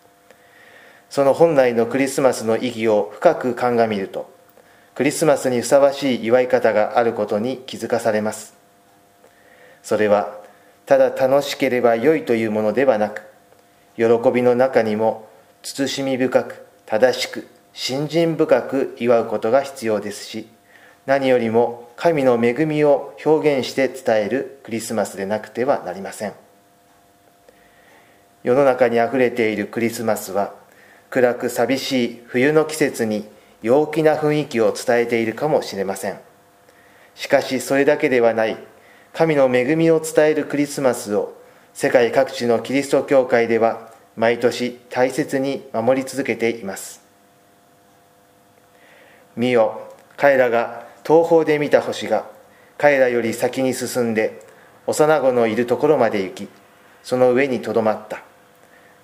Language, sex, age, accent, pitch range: Japanese, male, 40-59, native, 110-135 Hz